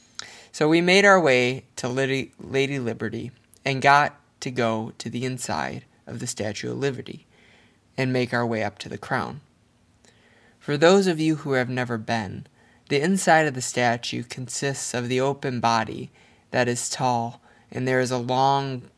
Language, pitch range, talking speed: English, 115-140 Hz, 170 wpm